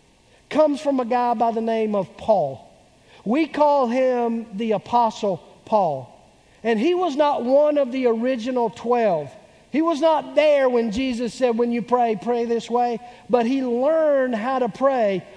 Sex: male